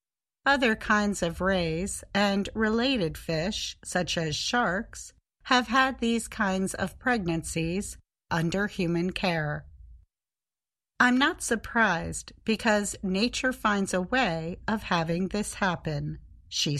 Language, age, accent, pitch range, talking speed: English, 50-69, American, 165-235 Hz, 115 wpm